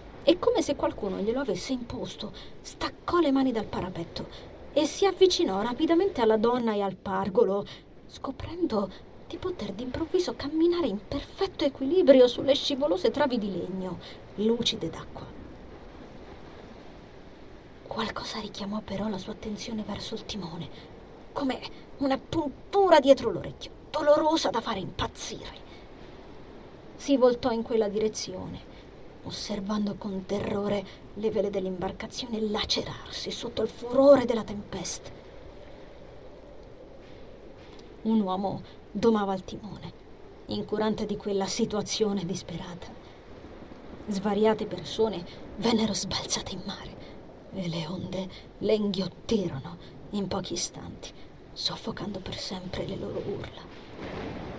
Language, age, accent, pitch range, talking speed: Italian, 30-49, native, 200-270 Hz, 110 wpm